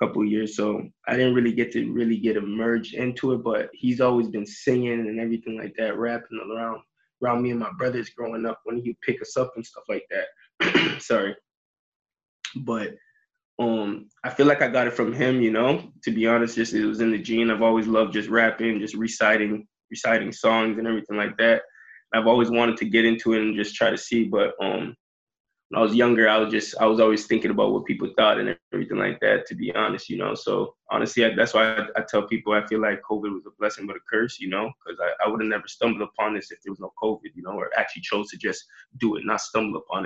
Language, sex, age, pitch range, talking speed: English, male, 20-39, 110-120 Hz, 235 wpm